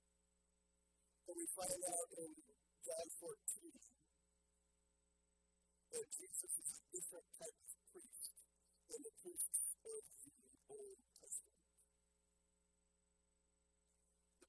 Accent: American